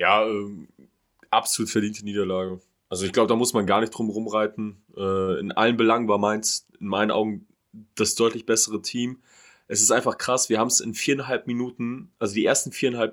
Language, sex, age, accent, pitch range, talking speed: German, male, 20-39, German, 110-135 Hz, 190 wpm